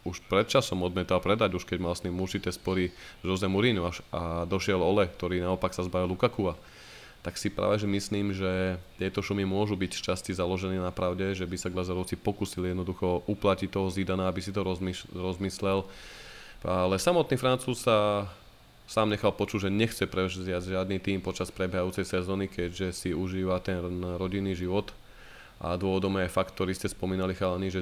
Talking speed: 170 wpm